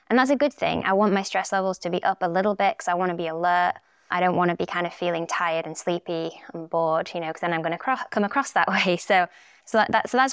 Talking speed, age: 285 wpm, 20-39